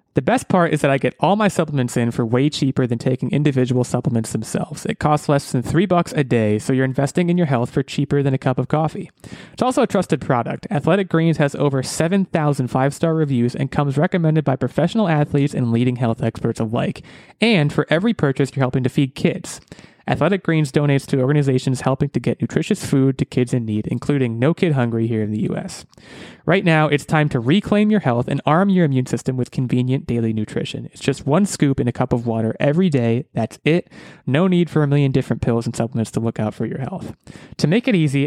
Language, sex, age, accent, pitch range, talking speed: English, male, 20-39, American, 125-160 Hz, 225 wpm